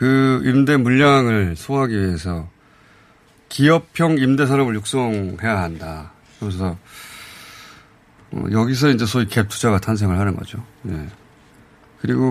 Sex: male